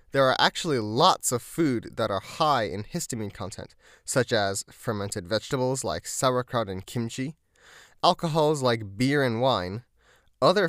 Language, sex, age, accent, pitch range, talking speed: English, male, 10-29, American, 105-140 Hz, 145 wpm